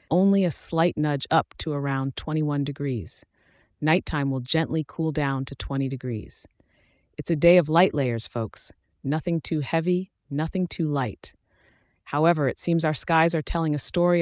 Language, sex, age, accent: English, female, 30-49, American